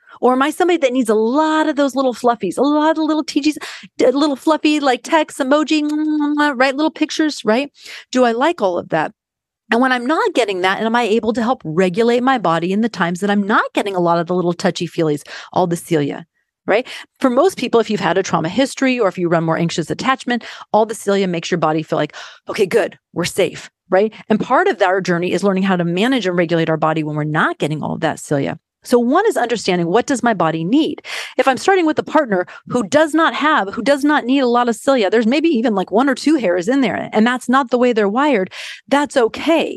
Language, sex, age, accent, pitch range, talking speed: English, female, 40-59, American, 195-295 Hz, 245 wpm